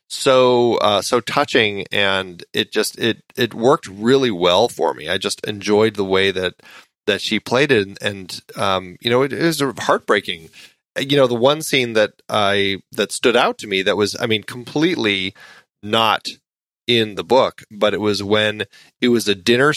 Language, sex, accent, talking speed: English, male, American, 190 wpm